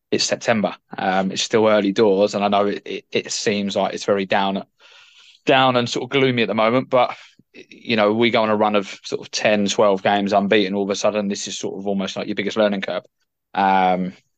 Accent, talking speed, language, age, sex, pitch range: British, 235 wpm, English, 20-39, male, 100-110 Hz